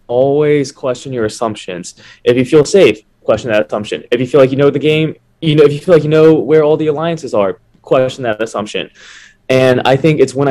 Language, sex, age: English, male, 20-39